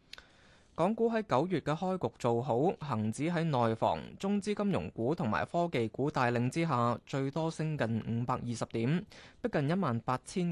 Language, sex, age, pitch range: Chinese, male, 20-39, 120-170 Hz